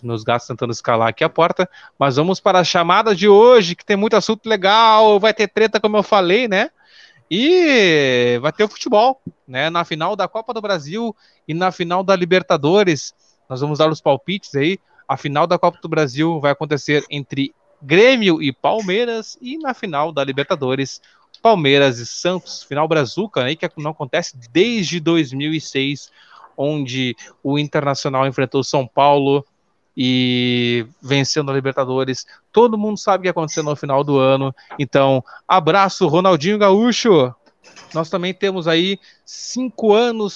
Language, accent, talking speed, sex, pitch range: Portuguese, Brazilian, 160 wpm, male, 140-195 Hz